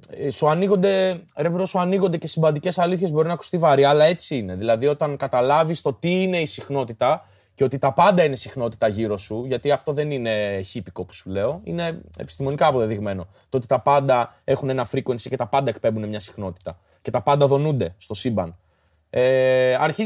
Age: 20-39